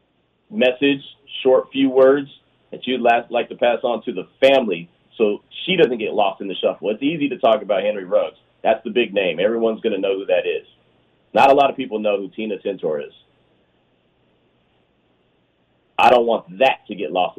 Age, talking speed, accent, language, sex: 40-59, 195 wpm, American, English, male